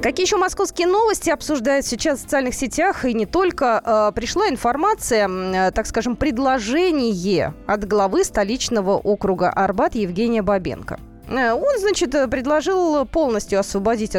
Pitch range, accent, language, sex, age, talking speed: 205-305 Hz, native, Russian, female, 20-39, 135 wpm